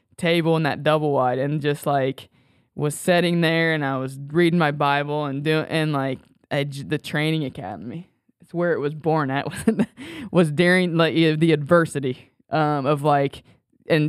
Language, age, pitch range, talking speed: English, 20-39, 145-160 Hz, 175 wpm